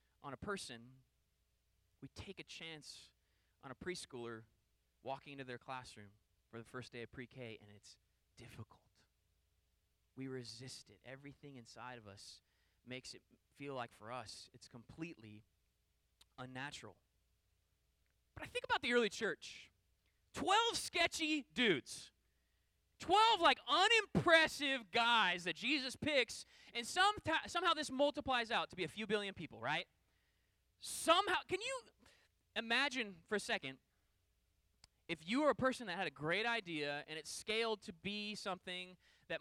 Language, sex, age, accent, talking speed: English, male, 20-39, American, 140 wpm